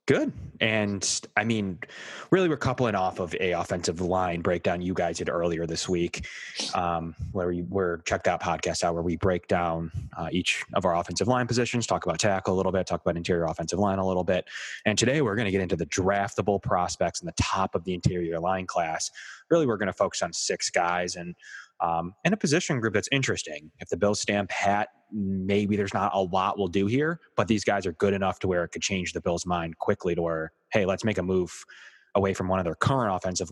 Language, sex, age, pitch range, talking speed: English, male, 20-39, 85-100 Hz, 230 wpm